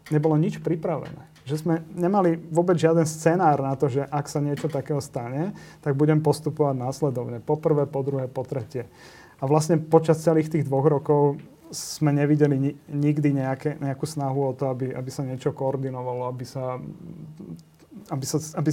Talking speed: 160 wpm